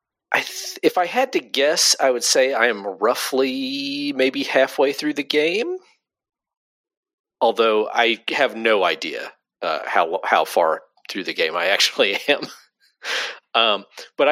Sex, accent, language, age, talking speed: male, American, English, 40-59, 145 wpm